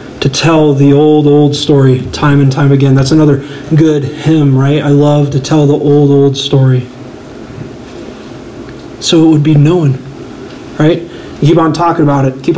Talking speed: 165 wpm